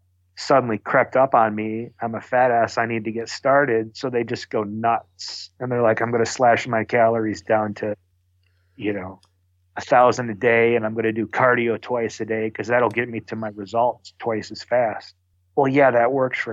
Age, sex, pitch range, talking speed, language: 40-59, male, 100-125 Hz, 210 wpm, English